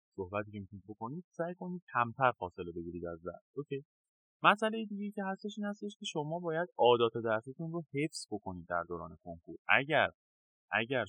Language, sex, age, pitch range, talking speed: Persian, male, 20-39, 95-135 Hz, 160 wpm